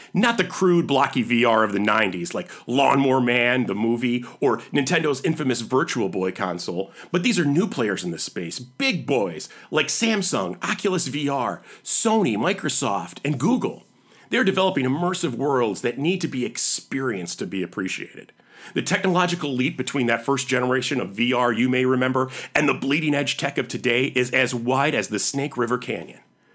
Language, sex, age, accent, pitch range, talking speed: English, male, 40-59, American, 125-190 Hz, 170 wpm